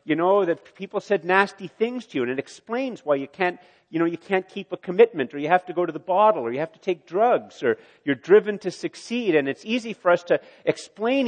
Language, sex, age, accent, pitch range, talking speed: English, male, 50-69, American, 145-195 Hz, 255 wpm